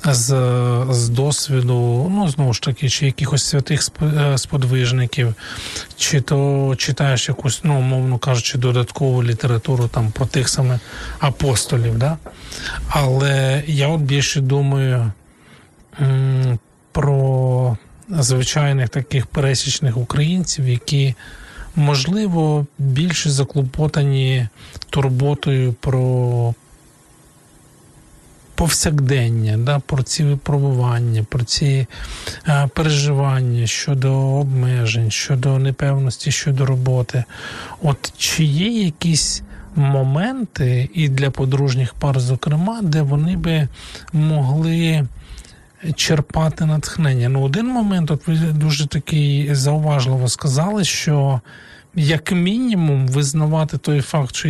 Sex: male